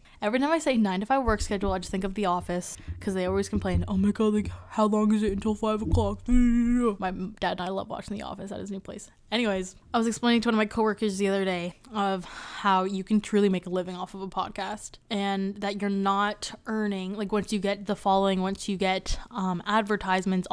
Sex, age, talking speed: female, 10-29, 240 wpm